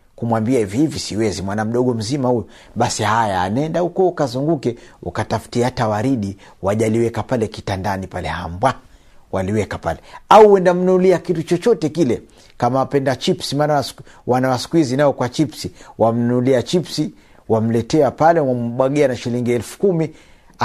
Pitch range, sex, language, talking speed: 110-155 Hz, male, Swahili, 130 wpm